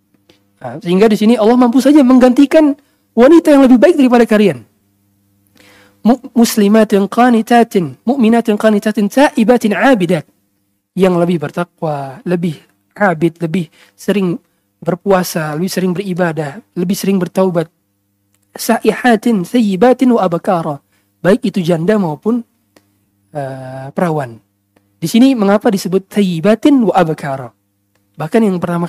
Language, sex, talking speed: Indonesian, male, 100 wpm